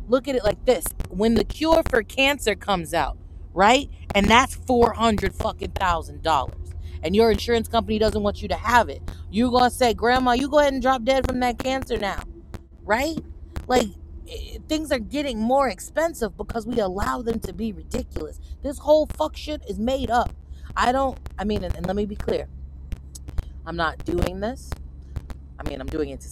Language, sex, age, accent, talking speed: English, female, 30-49, American, 190 wpm